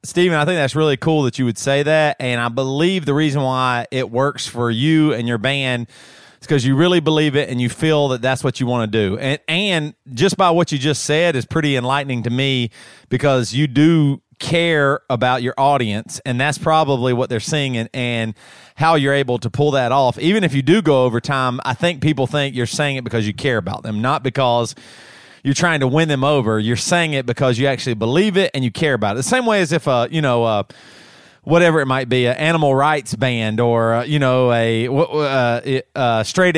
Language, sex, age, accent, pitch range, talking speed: English, male, 30-49, American, 125-155 Hz, 230 wpm